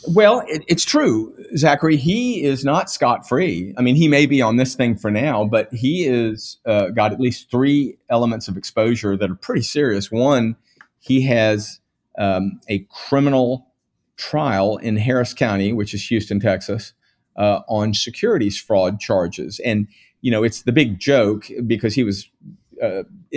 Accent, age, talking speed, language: American, 40-59, 160 wpm, English